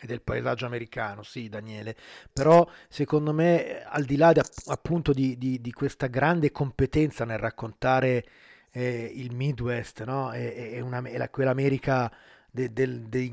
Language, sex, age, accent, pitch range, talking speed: Italian, male, 30-49, native, 125-145 Hz, 160 wpm